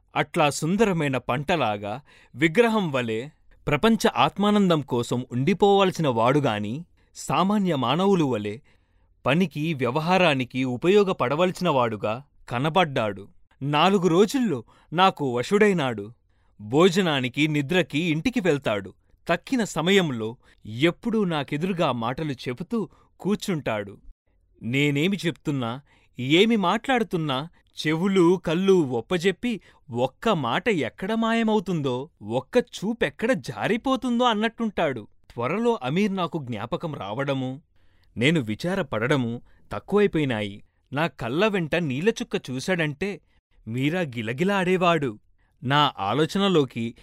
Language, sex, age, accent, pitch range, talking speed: Telugu, male, 30-49, native, 125-195 Hz, 80 wpm